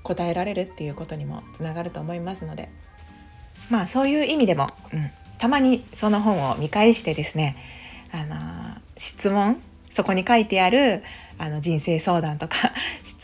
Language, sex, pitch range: Japanese, female, 145-225 Hz